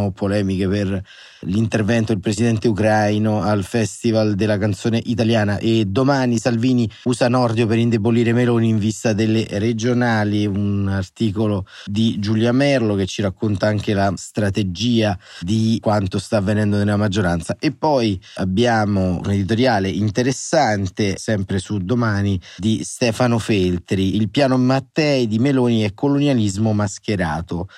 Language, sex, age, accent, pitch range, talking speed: Italian, male, 30-49, native, 105-120 Hz, 130 wpm